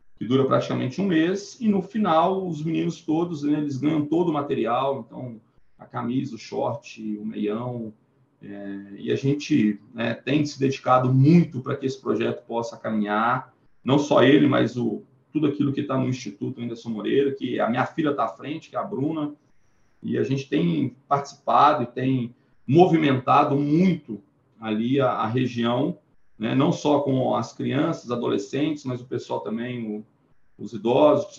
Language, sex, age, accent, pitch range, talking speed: Portuguese, male, 40-59, Brazilian, 115-145 Hz, 170 wpm